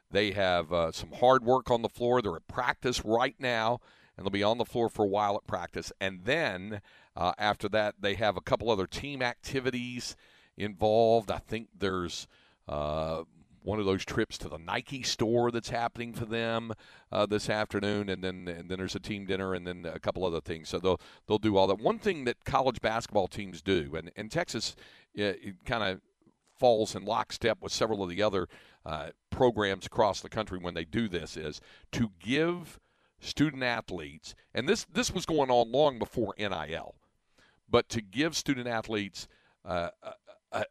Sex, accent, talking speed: male, American, 190 wpm